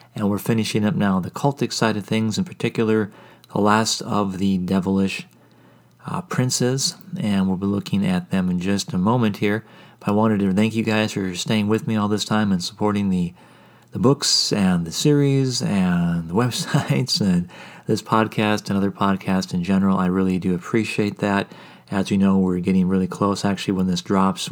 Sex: male